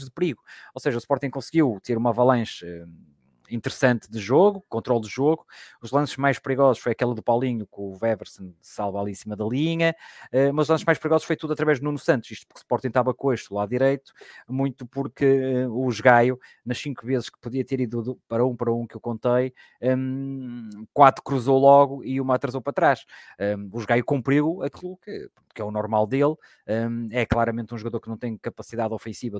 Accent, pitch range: Portuguese, 115-135 Hz